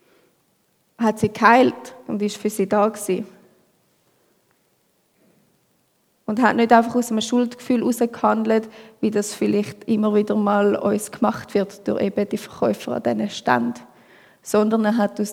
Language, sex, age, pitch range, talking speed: German, female, 20-39, 210-235 Hz, 145 wpm